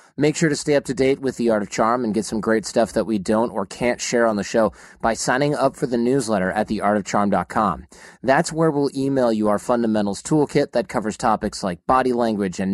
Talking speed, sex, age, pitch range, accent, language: 230 wpm, male, 30-49, 110-135 Hz, American, English